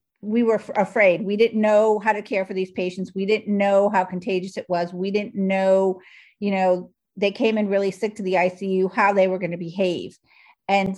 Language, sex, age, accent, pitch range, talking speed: English, female, 50-69, American, 185-215 Hz, 210 wpm